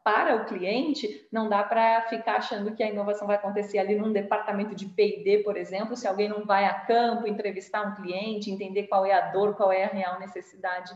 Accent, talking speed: Brazilian, 215 wpm